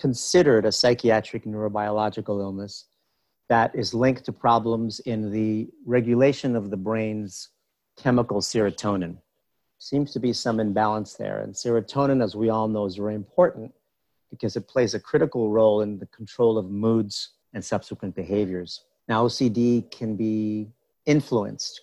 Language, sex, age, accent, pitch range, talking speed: English, male, 50-69, American, 105-115 Hz, 145 wpm